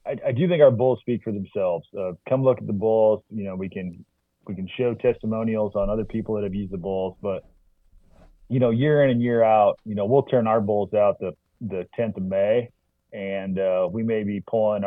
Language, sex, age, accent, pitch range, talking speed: English, male, 30-49, American, 95-115 Hz, 230 wpm